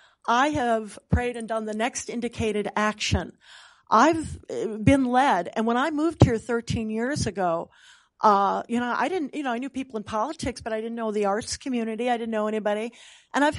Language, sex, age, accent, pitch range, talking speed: English, female, 40-59, American, 210-275 Hz, 200 wpm